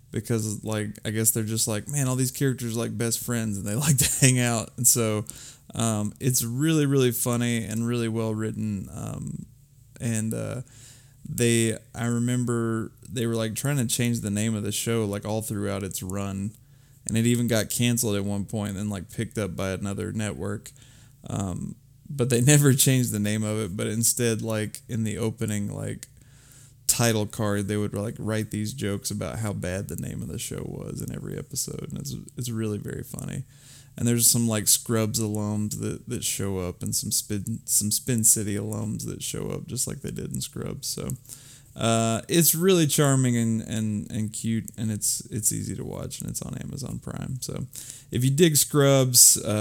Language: English